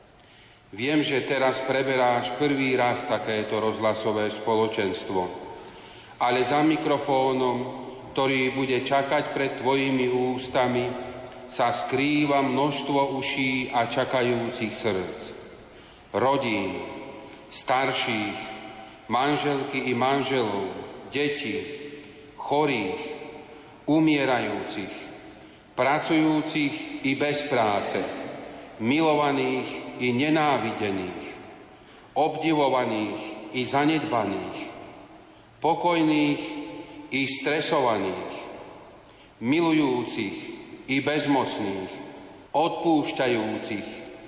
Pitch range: 125-150 Hz